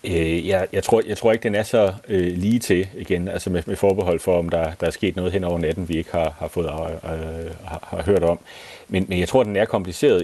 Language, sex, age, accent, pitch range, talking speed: Danish, male, 30-49, native, 80-95 Hz, 265 wpm